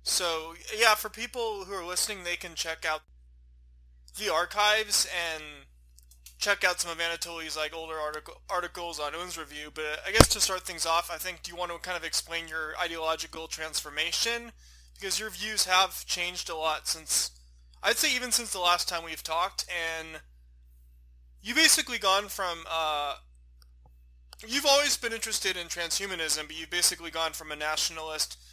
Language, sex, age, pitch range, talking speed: English, male, 20-39, 150-180 Hz, 170 wpm